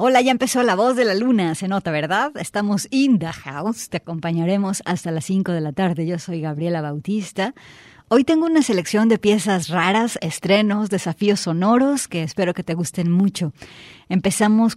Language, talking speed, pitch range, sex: Spanish, 180 wpm, 170-210 Hz, female